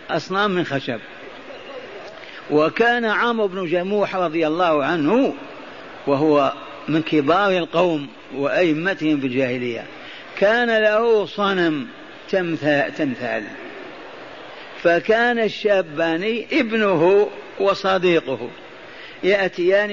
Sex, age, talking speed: male, 50-69, 80 wpm